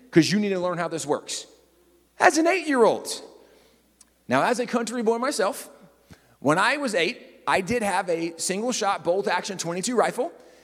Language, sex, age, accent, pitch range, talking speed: English, male, 30-49, American, 180-255 Hz, 170 wpm